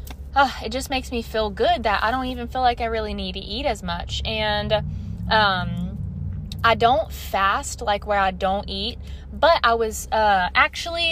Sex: female